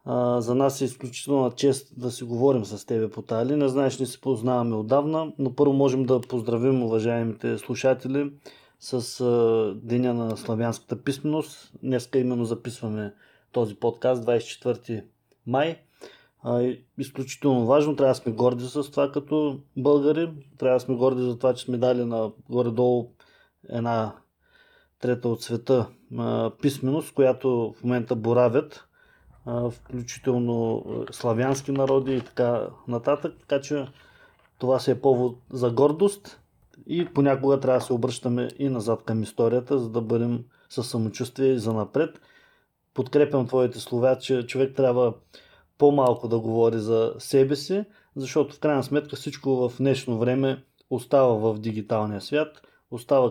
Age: 20-39